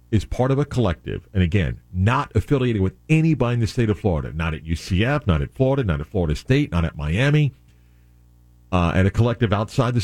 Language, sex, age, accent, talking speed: English, male, 50-69, American, 210 wpm